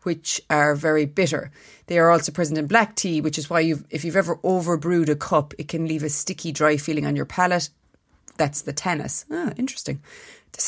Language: English